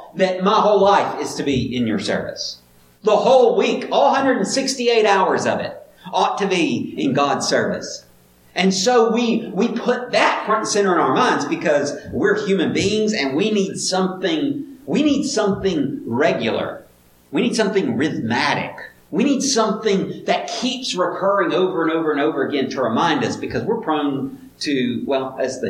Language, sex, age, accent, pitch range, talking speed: English, male, 50-69, American, 160-245 Hz, 175 wpm